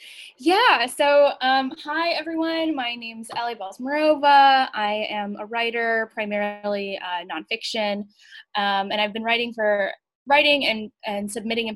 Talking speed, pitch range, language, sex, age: 140 wpm, 210-260 Hz, English, female, 10-29